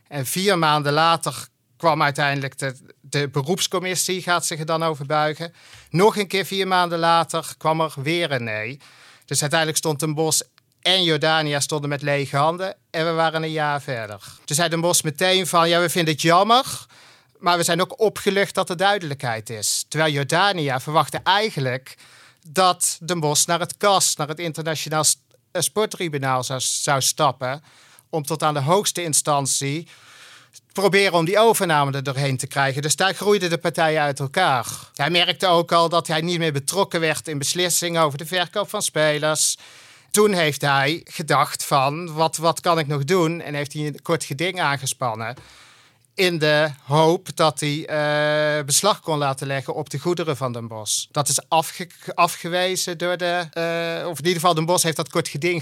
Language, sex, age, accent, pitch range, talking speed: Dutch, male, 50-69, Dutch, 145-175 Hz, 185 wpm